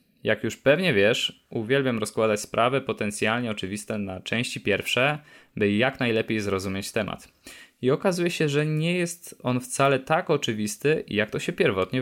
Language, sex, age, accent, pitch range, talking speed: Polish, male, 20-39, native, 105-135 Hz, 155 wpm